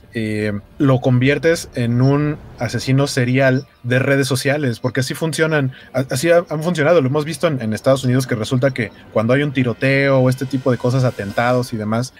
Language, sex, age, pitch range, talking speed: Spanish, male, 30-49, 115-145 Hz, 185 wpm